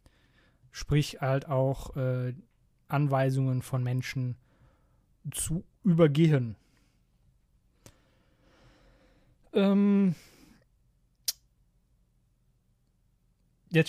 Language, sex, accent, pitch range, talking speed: German, male, German, 130-165 Hz, 50 wpm